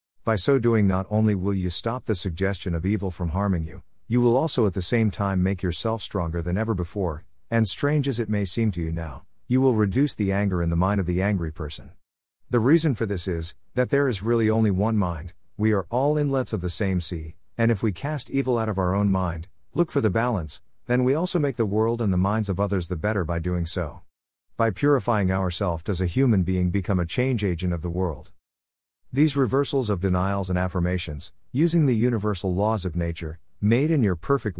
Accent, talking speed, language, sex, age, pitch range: American, 225 wpm, English, male, 50-69, 90-115 Hz